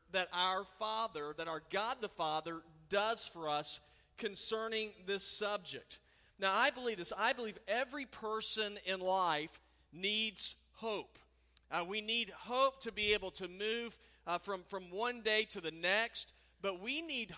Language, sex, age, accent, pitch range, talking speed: English, male, 40-59, American, 175-220 Hz, 160 wpm